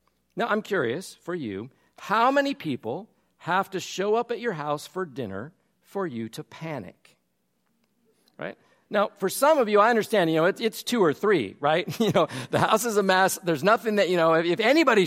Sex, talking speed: male, 200 wpm